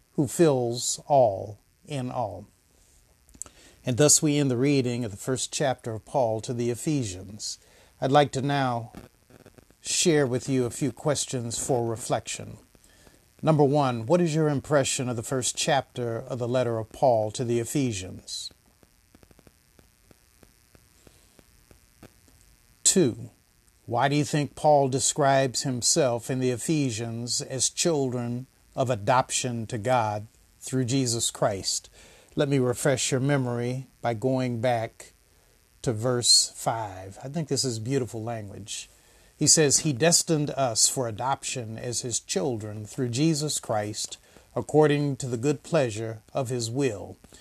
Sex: male